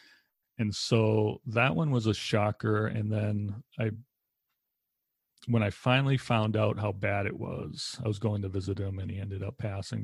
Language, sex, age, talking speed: English, male, 40-59, 180 wpm